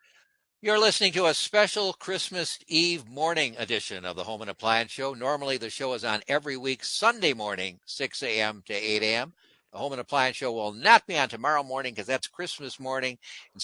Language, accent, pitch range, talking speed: English, American, 110-150 Hz, 200 wpm